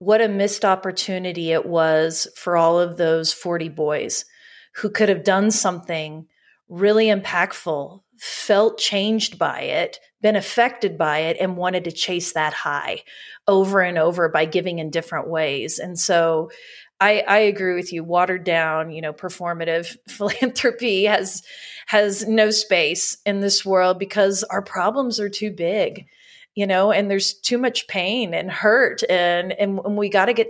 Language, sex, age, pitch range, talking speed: English, female, 30-49, 170-215 Hz, 160 wpm